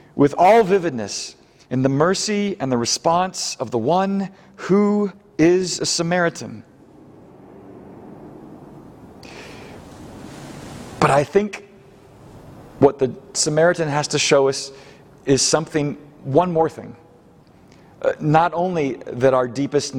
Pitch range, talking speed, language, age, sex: 115-150 Hz, 110 wpm, English, 40-59, male